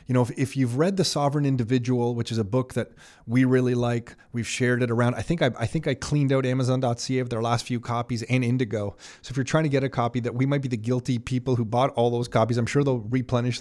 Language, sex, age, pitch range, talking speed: English, male, 30-49, 115-135 Hz, 270 wpm